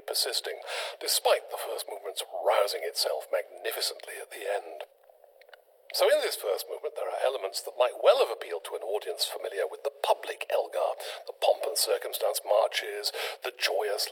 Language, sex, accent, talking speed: English, male, British, 160 wpm